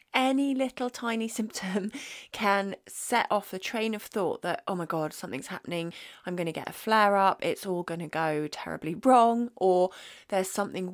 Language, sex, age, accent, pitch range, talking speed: English, female, 30-49, British, 180-230 Hz, 175 wpm